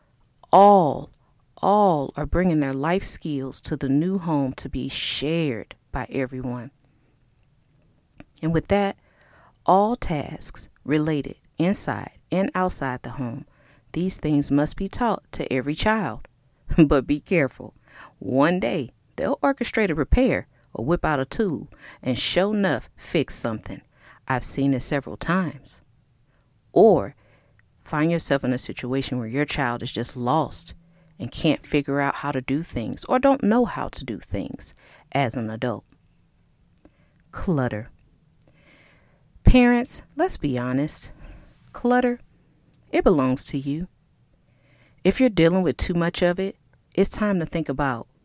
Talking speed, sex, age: 140 wpm, female, 40-59